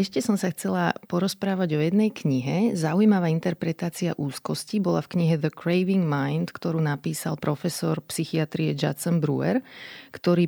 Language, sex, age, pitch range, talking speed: Slovak, female, 30-49, 155-190 Hz, 135 wpm